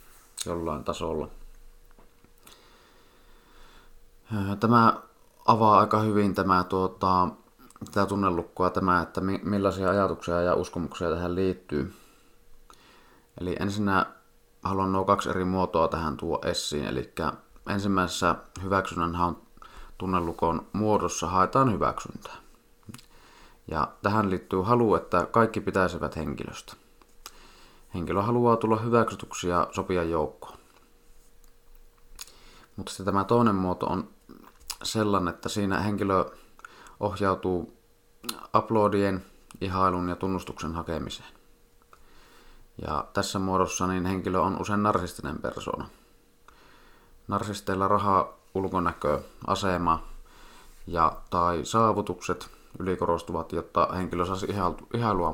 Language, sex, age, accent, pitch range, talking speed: Finnish, male, 30-49, native, 90-100 Hz, 95 wpm